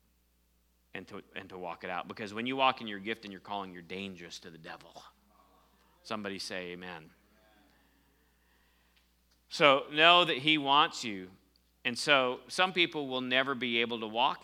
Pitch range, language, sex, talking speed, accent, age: 85-115 Hz, English, male, 165 wpm, American, 40-59